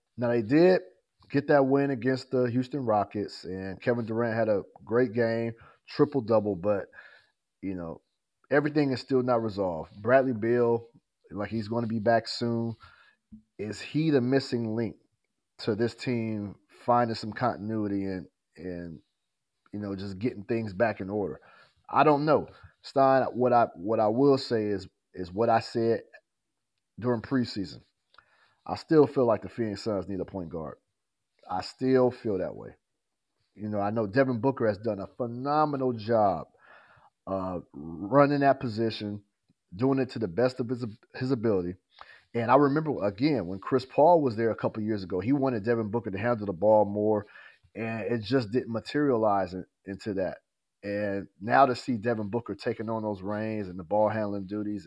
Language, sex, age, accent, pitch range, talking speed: English, male, 30-49, American, 105-125 Hz, 175 wpm